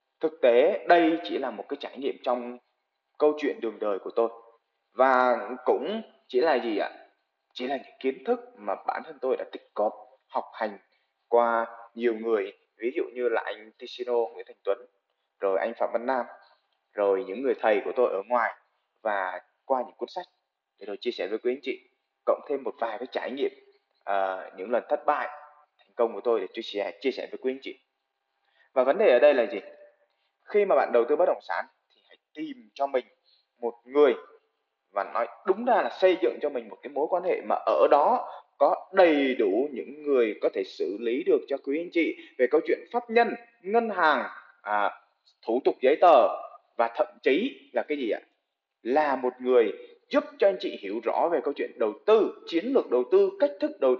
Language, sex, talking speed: Vietnamese, male, 210 wpm